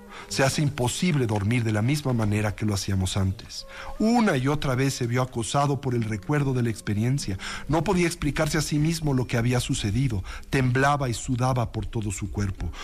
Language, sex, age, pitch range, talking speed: Spanish, male, 50-69, 110-145 Hz, 195 wpm